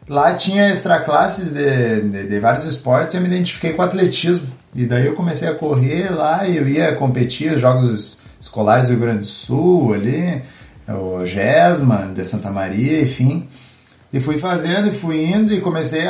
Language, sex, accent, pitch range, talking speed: Portuguese, male, Brazilian, 120-165 Hz, 180 wpm